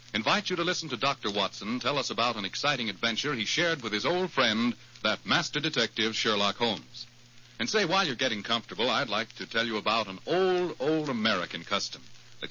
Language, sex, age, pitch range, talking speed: English, male, 60-79, 115-170 Hz, 200 wpm